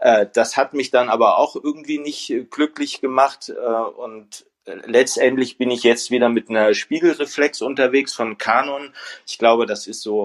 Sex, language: male, German